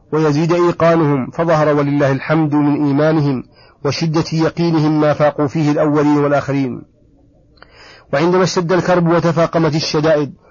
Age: 40-59